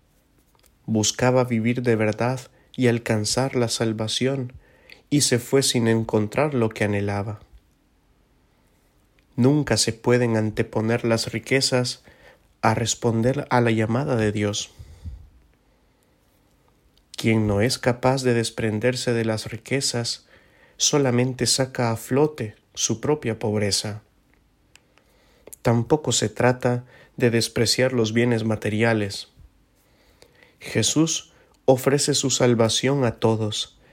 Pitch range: 110-130 Hz